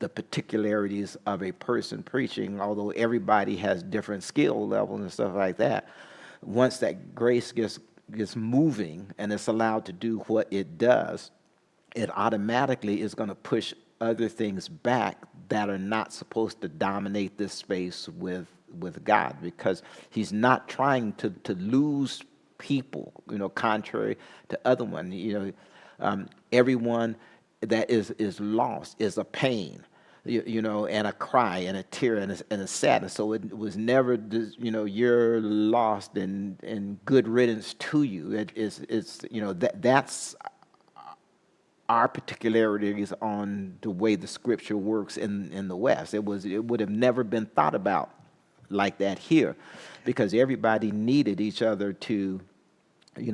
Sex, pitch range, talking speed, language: male, 100-115 Hz, 155 wpm, English